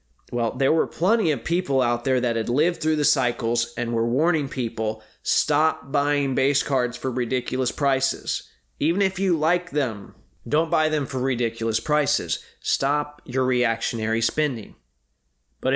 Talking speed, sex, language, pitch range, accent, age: 155 wpm, male, English, 120-150 Hz, American, 20-39